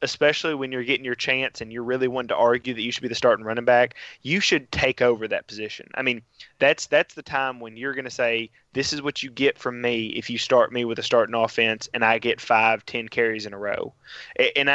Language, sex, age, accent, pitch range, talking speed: English, male, 20-39, American, 115-135 Hz, 250 wpm